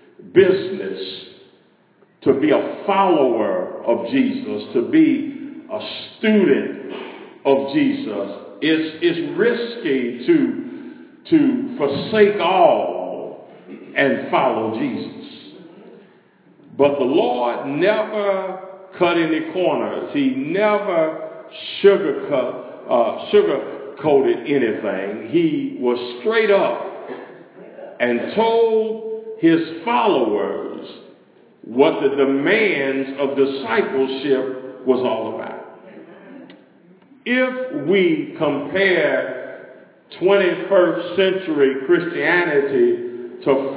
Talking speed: 80 wpm